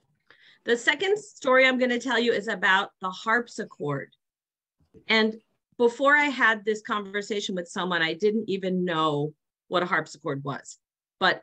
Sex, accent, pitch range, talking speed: female, American, 185-255 Hz, 145 wpm